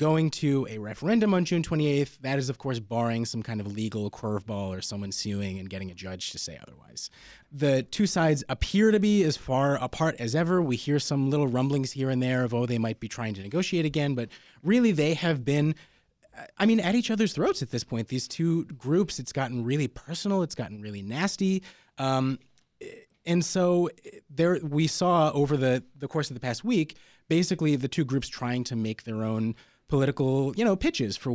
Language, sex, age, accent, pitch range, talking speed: English, male, 30-49, American, 115-155 Hz, 205 wpm